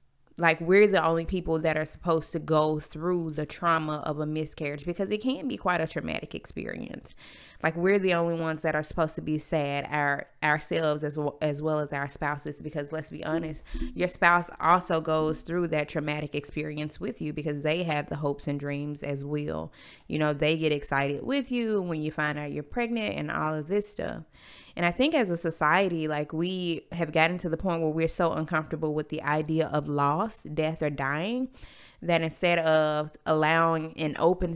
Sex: female